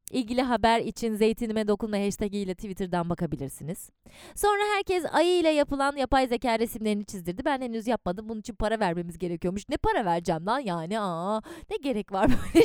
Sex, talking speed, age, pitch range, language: female, 160 wpm, 20-39, 180-285 Hz, Turkish